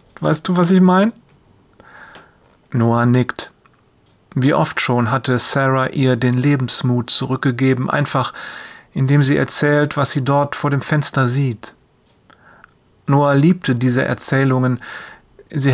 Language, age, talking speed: German, 40-59, 120 wpm